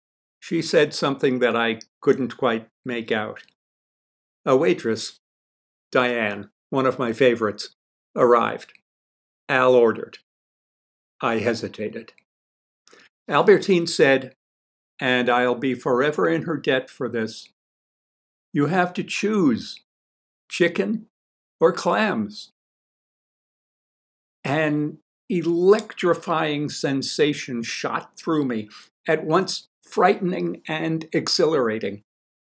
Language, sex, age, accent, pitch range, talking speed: English, male, 60-79, American, 125-170 Hz, 90 wpm